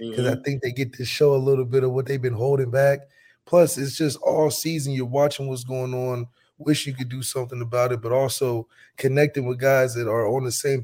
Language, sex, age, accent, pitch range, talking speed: English, male, 30-49, American, 130-150 Hz, 240 wpm